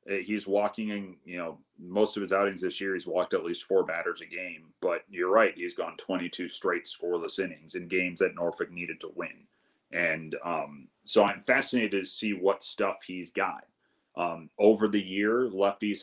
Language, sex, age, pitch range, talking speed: English, male, 30-49, 95-105 Hz, 190 wpm